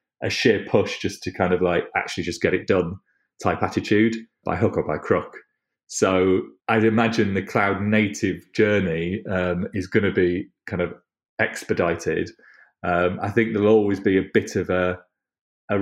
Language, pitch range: English, 90-100 Hz